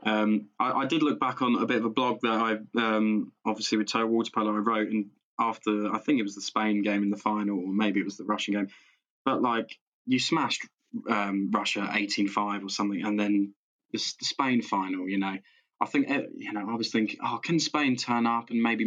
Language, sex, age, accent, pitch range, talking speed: English, male, 20-39, British, 105-130 Hz, 230 wpm